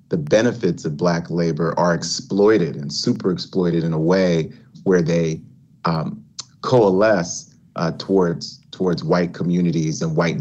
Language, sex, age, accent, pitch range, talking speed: English, male, 30-49, American, 85-125 Hz, 140 wpm